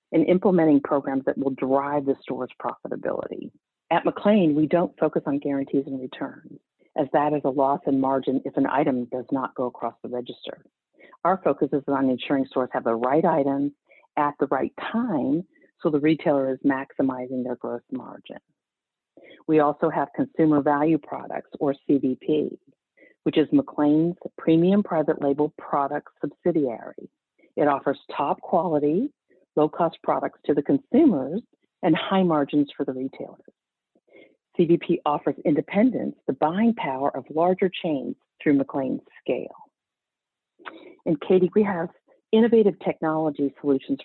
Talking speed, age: 145 wpm, 50-69